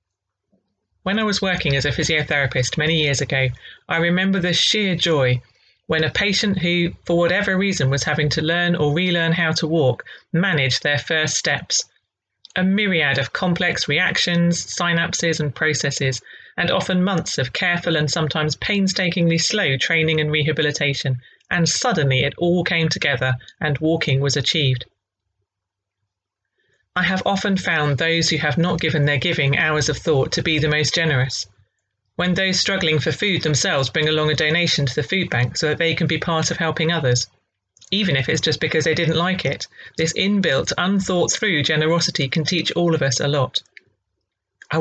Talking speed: 170 wpm